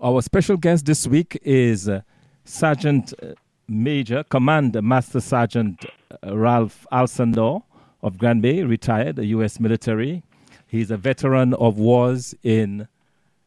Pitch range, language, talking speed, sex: 110-130 Hz, English, 110 wpm, male